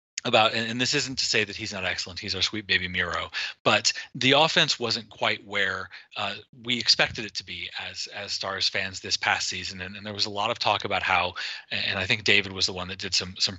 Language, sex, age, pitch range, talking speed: English, male, 30-49, 95-115 Hz, 245 wpm